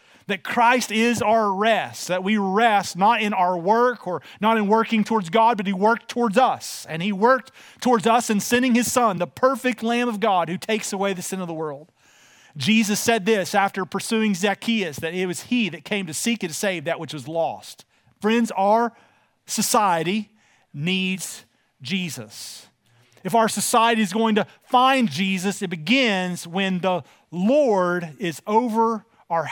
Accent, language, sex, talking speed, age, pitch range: American, English, male, 175 wpm, 40-59, 190-235 Hz